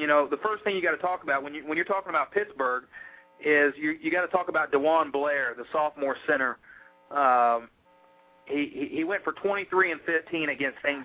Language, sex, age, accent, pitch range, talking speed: English, male, 40-59, American, 140-195 Hz, 205 wpm